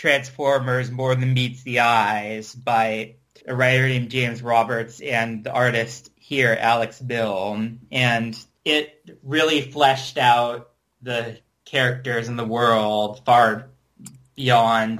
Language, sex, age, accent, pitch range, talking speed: English, male, 30-49, American, 115-130 Hz, 120 wpm